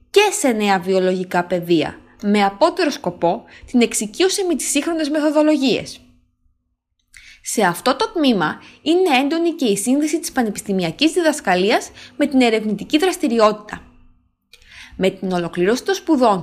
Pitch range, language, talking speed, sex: 195-310 Hz, Greek, 130 wpm, female